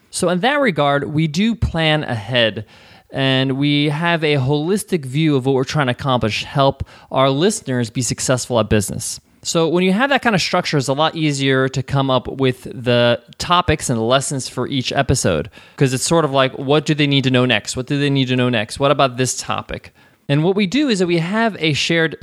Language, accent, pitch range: English, American, 125-160 Hz